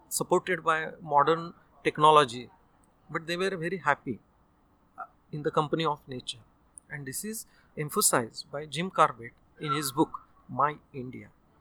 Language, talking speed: English, 135 wpm